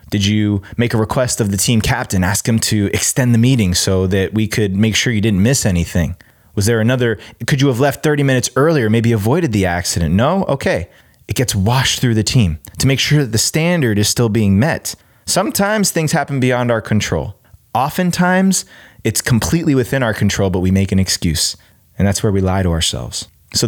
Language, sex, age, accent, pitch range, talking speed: English, male, 20-39, American, 100-130 Hz, 210 wpm